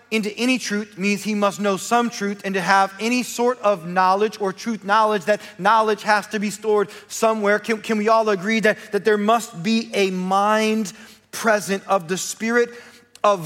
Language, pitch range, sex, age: English, 175-225 Hz, male, 30-49